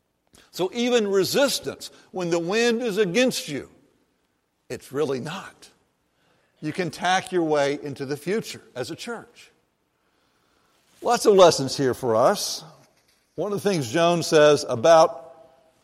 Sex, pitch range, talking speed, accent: male, 145-185 Hz, 135 wpm, American